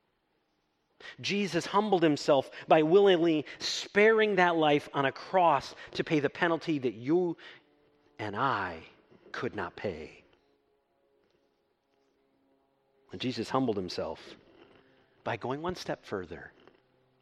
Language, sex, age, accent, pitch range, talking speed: English, male, 40-59, American, 110-180 Hz, 110 wpm